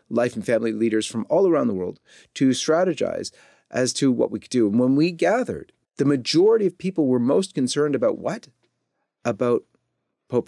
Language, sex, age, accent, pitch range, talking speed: English, male, 40-59, American, 110-140 Hz, 185 wpm